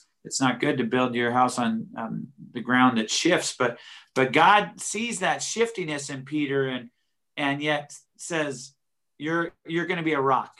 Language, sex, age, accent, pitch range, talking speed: English, male, 40-59, American, 130-165 Hz, 180 wpm